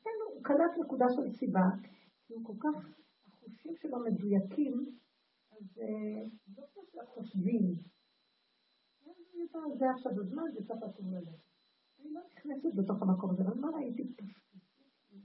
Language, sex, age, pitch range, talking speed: Hebrew, female, 50-69, 190-255 Hz, 105 wpm